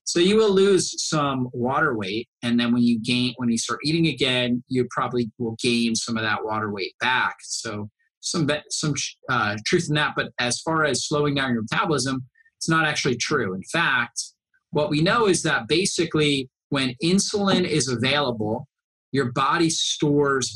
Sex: male